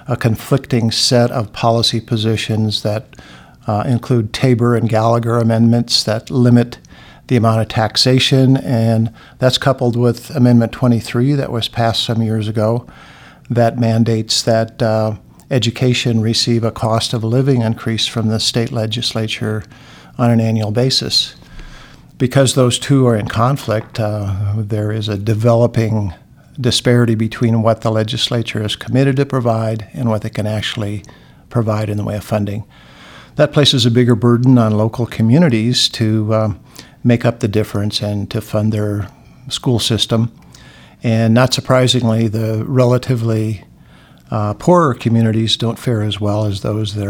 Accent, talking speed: American, 145 wpm